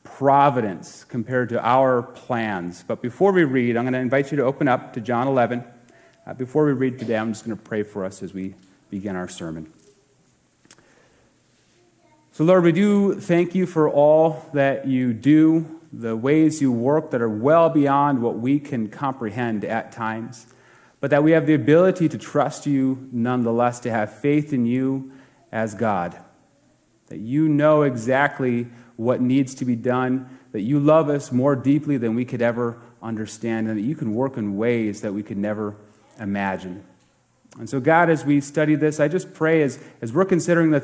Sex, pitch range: male, 115-150 Hz